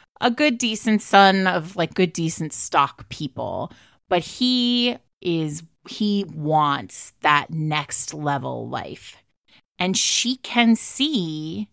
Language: English